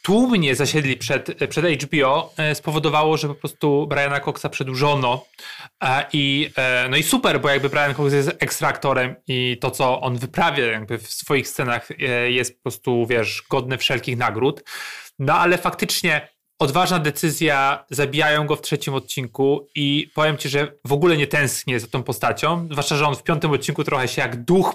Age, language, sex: 30-49, Polish, male